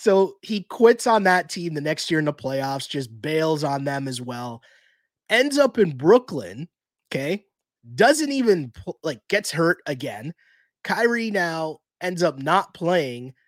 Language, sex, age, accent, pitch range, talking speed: English, male, 20-39, American, 140-175 Hz, 155 wpm